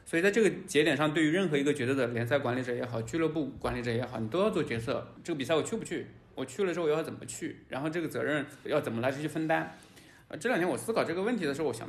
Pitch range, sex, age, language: 130-165 Hz, male, 20-39, Chinese